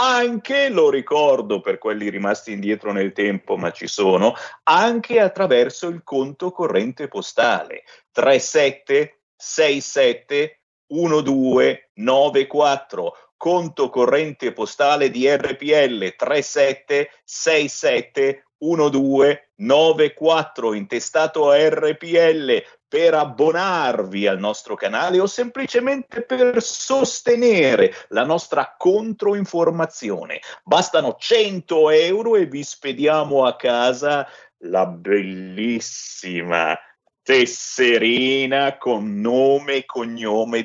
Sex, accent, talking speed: male, native, 85 wpm